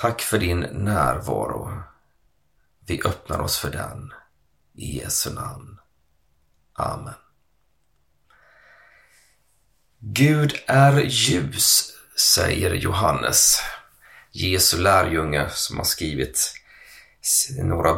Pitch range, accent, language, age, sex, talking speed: 80-120 Hz, native, Swedish, 30-49, male, 80 wpm